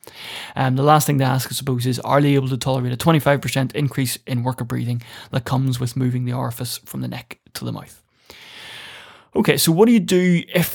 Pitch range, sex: 125-145 Hz, male